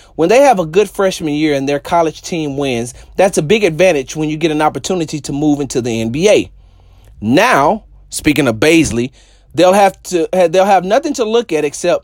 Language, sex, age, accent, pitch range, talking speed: English, male, 30-49, American, 160-220 Hz, 200 wpm